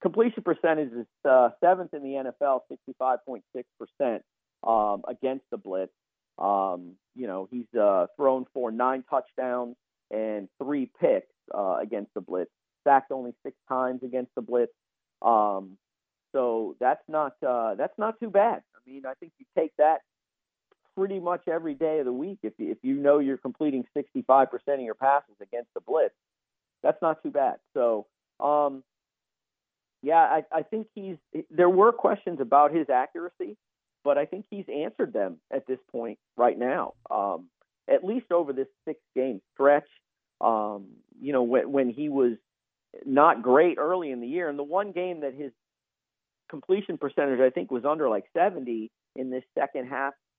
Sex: male